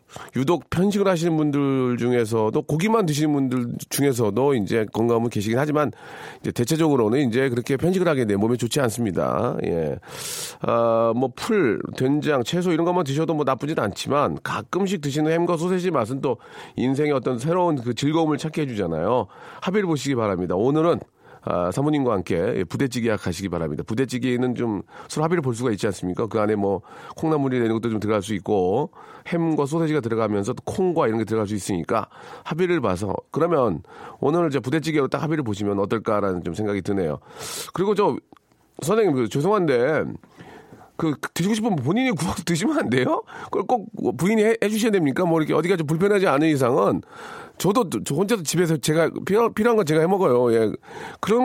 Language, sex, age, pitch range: Korean, male, 40-59, 120-175 Hz